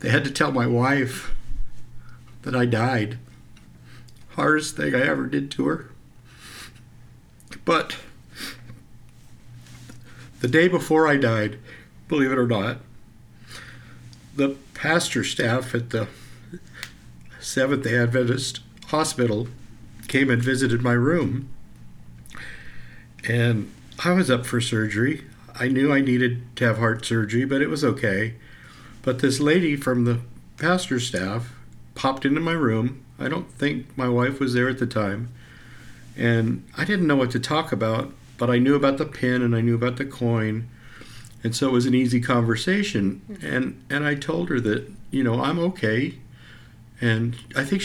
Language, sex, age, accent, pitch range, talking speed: English, male, 60-79, American, 115-140 Hz, 150 wpm